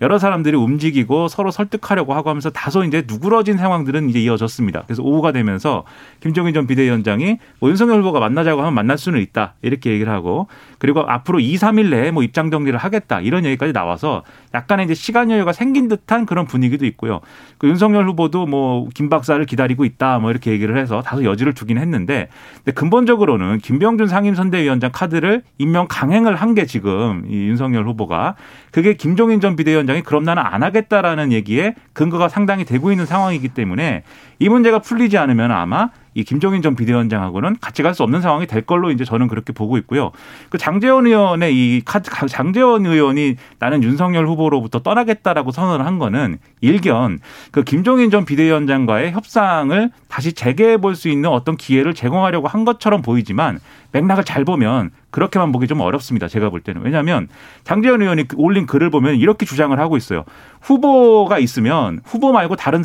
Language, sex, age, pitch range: Korean, male, 40-59, 125-195 Hz